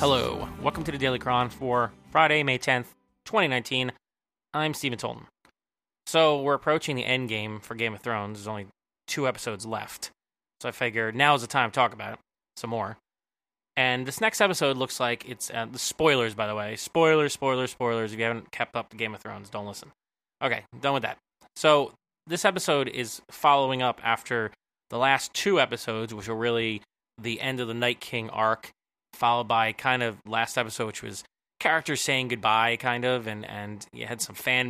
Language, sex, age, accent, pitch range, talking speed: English, male, 20-39, American, 110-130 Hz, 195 wpm